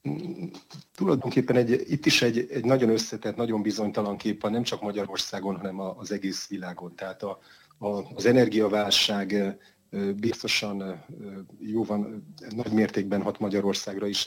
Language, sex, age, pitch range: Hungarian, male, 30-49, 100-105 Hz